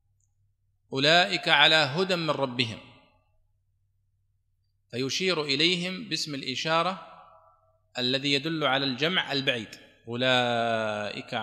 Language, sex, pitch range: Arabic, male, 115-160 Hz